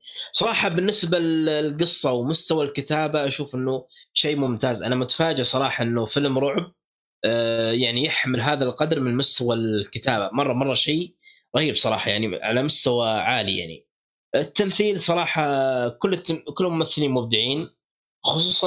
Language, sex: Arabic, male